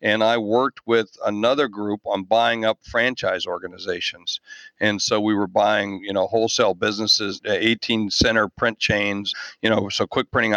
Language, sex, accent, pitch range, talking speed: English, male, American, 105-120 Hz, 165 wpm